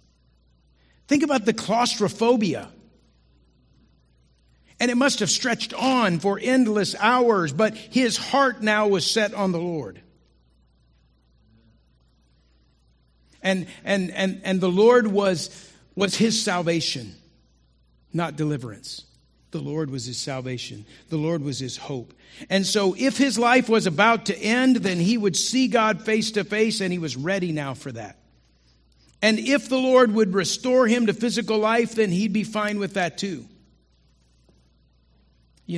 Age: 50-69